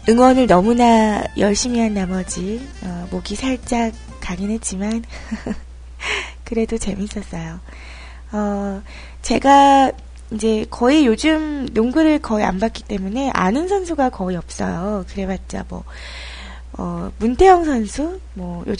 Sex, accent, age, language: female, native, 20-39, Korean